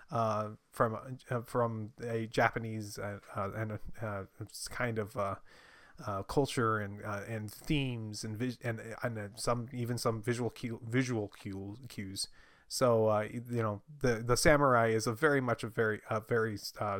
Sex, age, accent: male, 30-49, American